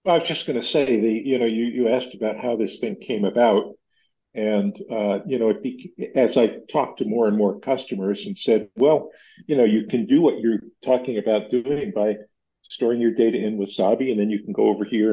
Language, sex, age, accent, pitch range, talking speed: English, male, 50-69, American, 100-130 Hz, 235 wpm